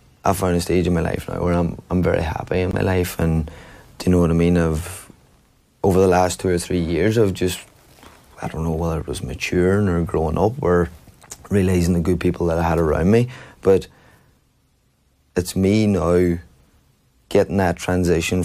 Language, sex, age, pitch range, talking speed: English, male, 30-49, 80-90 Hz, 195 wpm